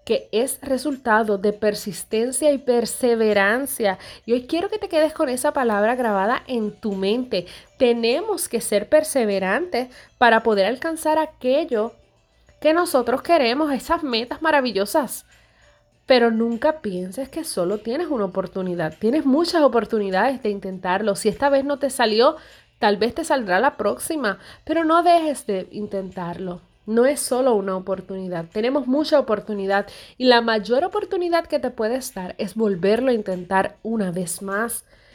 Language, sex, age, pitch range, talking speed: Spanish, female, 30-49, 210-290 Hz, 150 wpm